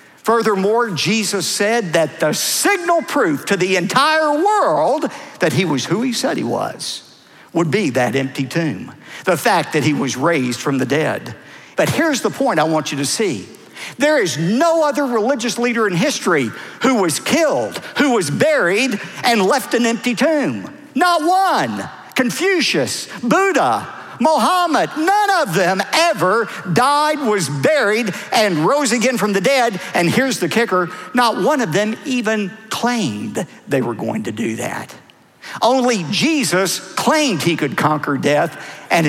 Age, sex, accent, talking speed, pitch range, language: 50-69, male, American, 160 wpm, 170-255 Hz, English